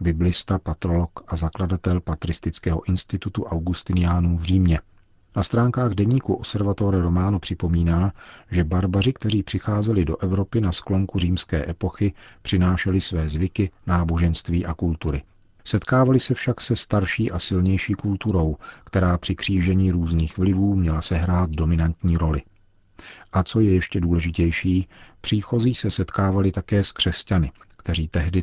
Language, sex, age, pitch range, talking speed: Czech, male, 40-59, 85-100 Hz, 130 wpm